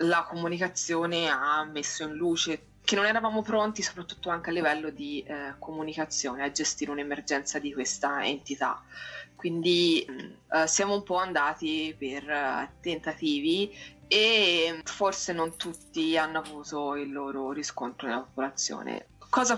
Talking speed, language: 130 wpm, Italian